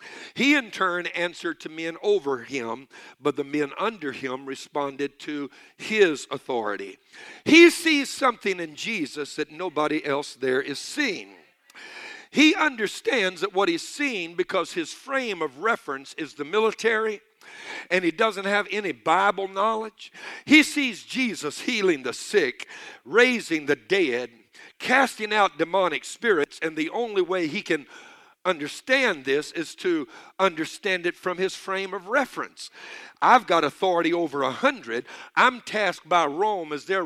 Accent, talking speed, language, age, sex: American, 145 wpm, English, 60-79, male